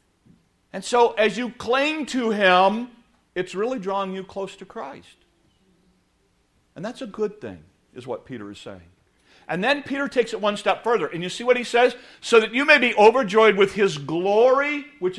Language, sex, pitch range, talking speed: English, male, 165-235 Hz, 190 wpm